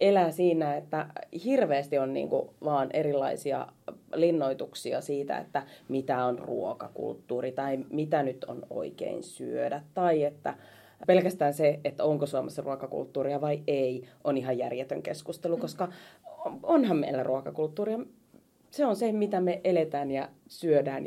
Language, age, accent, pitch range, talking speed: Finnish, 30-49, native, 140-180 Hz, 130 wpm